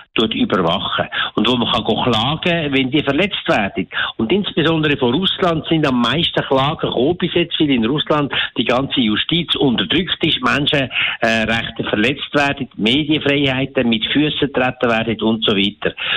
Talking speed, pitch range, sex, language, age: 155 wpm, 130-165 Hz, male, German, 60-79